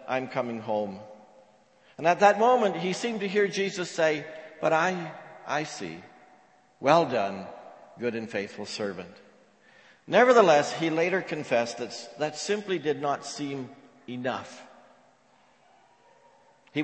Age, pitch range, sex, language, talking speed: 60-79, 140-185 Hz, male, English, 125 wpm